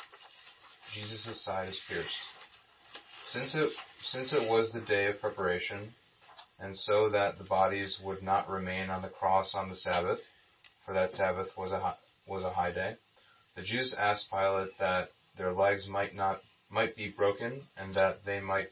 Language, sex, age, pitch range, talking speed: English, male, 30-49, 95-110 Hz, 170 wpm